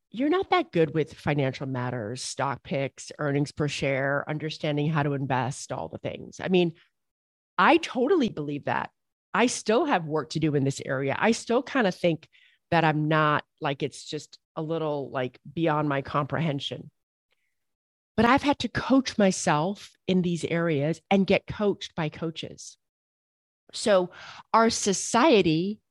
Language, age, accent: English, 40-59, American